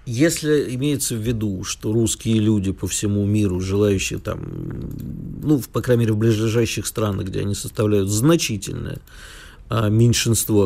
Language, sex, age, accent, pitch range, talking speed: Russian, male, 50-69, native, 105-130 Hz, 135 wpm